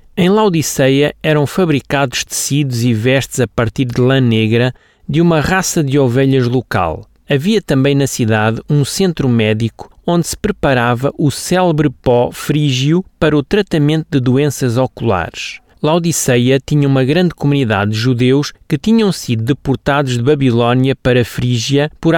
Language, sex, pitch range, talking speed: Portuguese, male, 120-150 Hz, 145 wpm